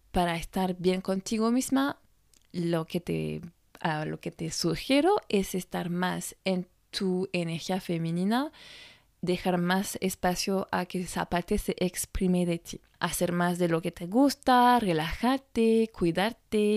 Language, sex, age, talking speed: Spanish, female, 20-39, 145 wpm